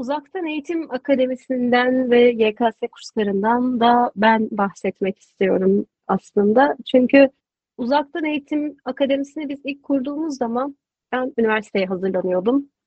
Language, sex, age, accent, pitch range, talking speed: Turkish, female, 30-49, native, 205-265 Hz, 105 wpm